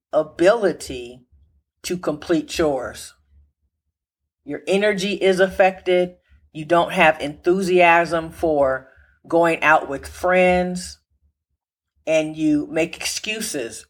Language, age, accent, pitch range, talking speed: English, 40-59, American, 130-180 Hz, 90 wpm